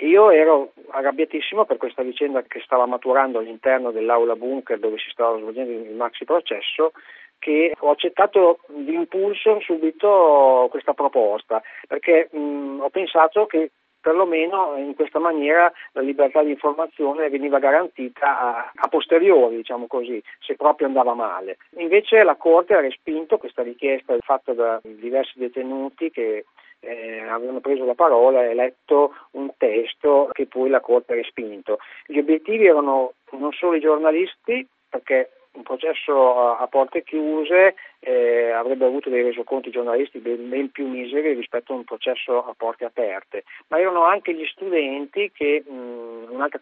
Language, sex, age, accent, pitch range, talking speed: Italian, male, 40-59, native, 130-175 Hz, 150 wpm